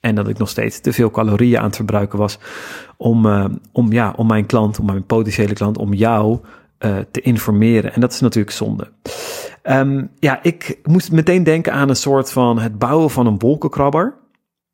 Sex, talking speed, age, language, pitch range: male, 180 wpm, 40-59, Dutch, 110-130 Hz